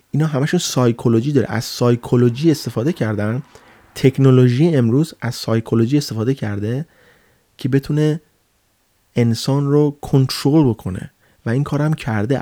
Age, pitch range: 30-49, 110-145 Hz